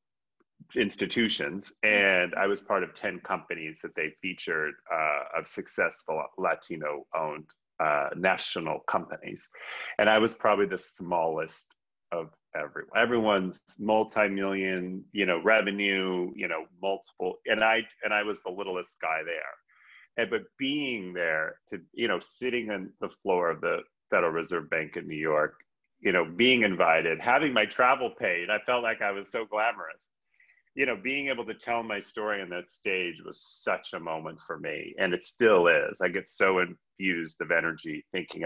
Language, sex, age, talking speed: English, male, 30-49, 165 wpm